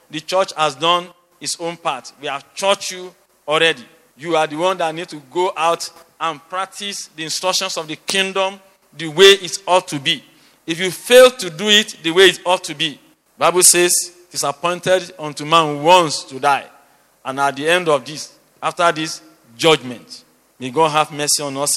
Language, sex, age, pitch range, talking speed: English, male, 50-69, 150-175 Hz, 200 wpm